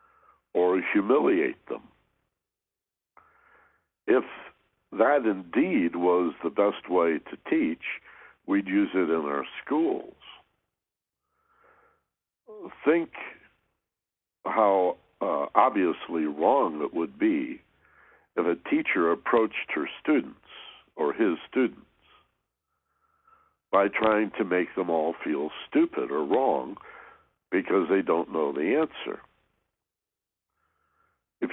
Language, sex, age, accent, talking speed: English, male, 60-79, American, 95 wpm